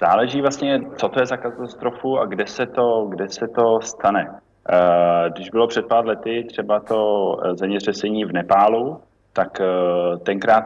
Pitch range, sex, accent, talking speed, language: 95-110 Hz, male, native, 150 wpm, Czech